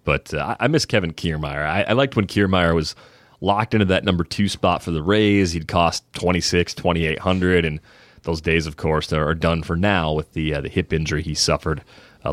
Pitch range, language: 80-105 Hz, English